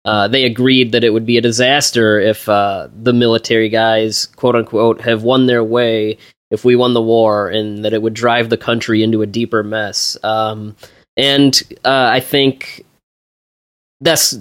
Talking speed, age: 170 wpm, 20-39